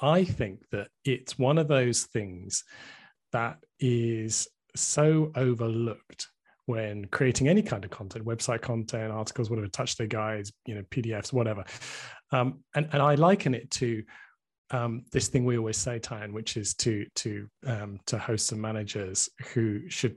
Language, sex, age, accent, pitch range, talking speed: English, male, 30-49, British, 105-130 Hz, 160 wpm